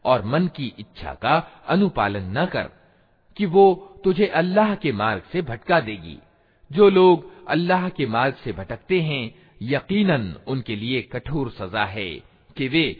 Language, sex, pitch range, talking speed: Hindi, male, 110-180 Hz, 150 wpm